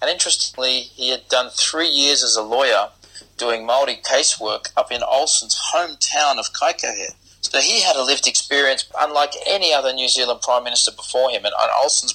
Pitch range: 115-140 Hz